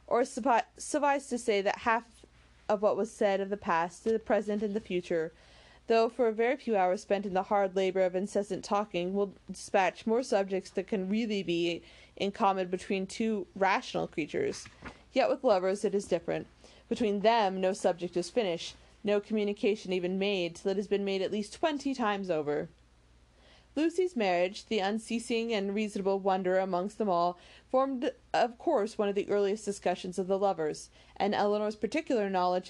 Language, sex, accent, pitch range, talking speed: English, female, American, 185-225 Hz, 180 wpm